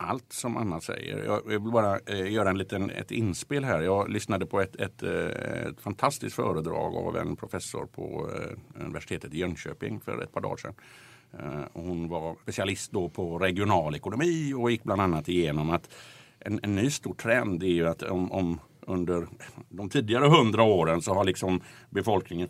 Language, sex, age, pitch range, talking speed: Swedish, male, 50-69, 90-120 Hz, 175 wpm